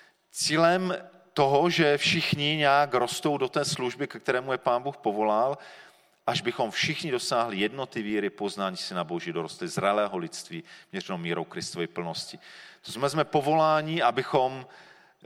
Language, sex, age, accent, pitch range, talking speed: Czech, male, 40-59, native, 110-145 Hz, 145 wpm